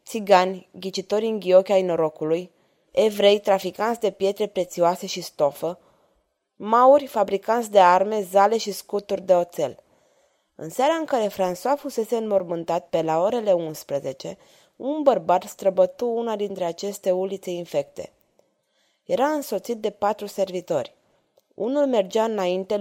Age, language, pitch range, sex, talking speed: 20-39, Romanian, 180-225 Hz, female, 130 wpm